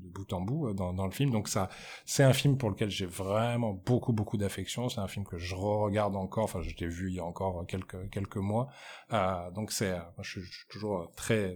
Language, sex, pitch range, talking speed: French, male, 95-115 Hz, 250 wpm